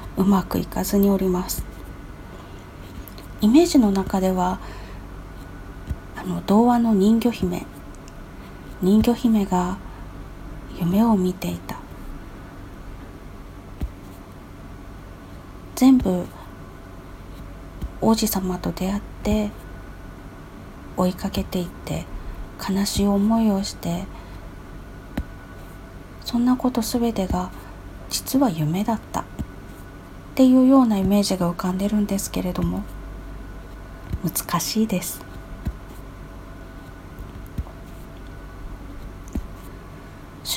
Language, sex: Japanese, female